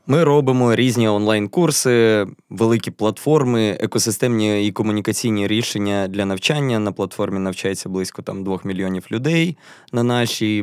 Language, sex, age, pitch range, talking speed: Ukrainian, male, 20-39, 100-125 Hz, 125 wpm